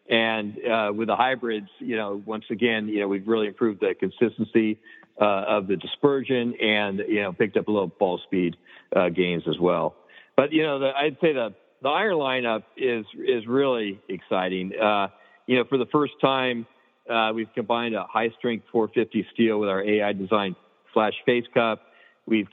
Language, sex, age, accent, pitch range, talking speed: English, male, 50-69, American, 105-120 Hz, 185 wpm